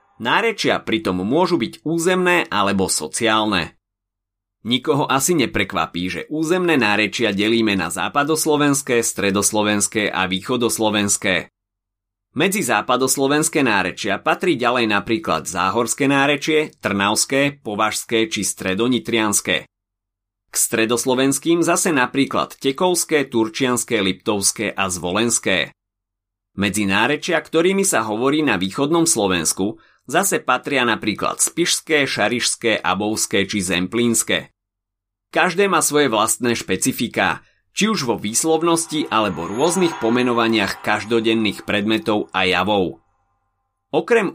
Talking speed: 100 wpm